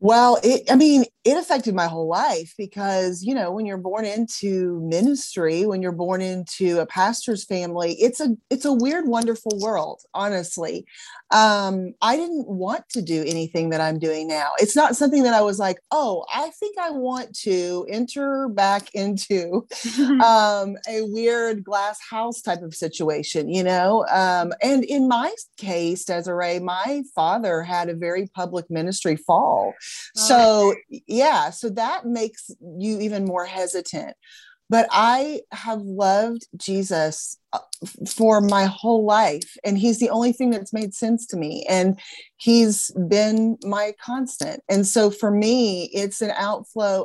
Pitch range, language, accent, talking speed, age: 175-230 Hz, English, American, 155 wpm, 30-49